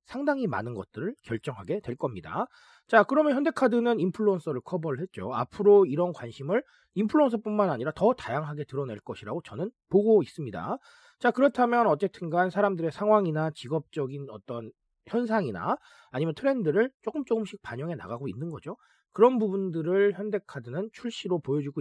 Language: Korean